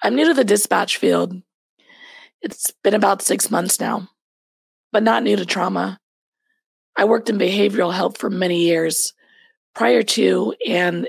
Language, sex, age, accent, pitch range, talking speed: English, female, 20-39, American, 185-270 Hz, 150 wpm